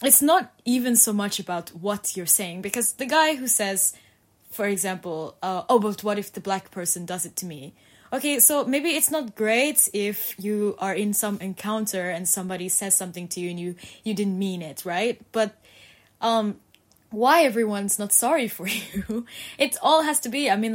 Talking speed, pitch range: 195 wpm, 175-215 Hz